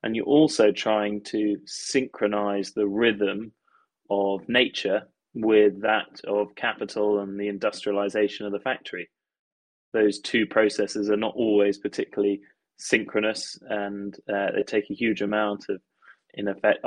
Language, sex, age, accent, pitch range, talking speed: English, male, 20-39, British, 100-105 Hz, 135 wpm